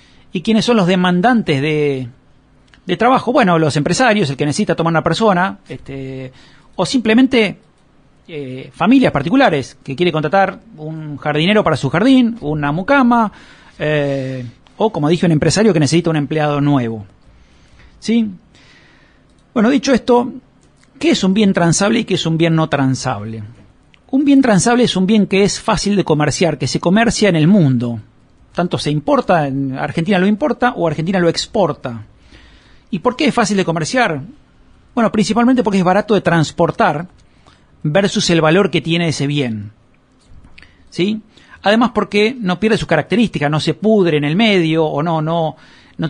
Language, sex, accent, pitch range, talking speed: Spanish, male, Argentinian, 145-205 Hz, 165 wpm